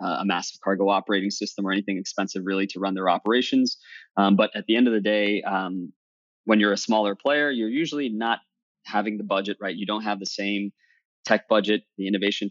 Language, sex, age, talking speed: English, male, 20-39, 205 wpm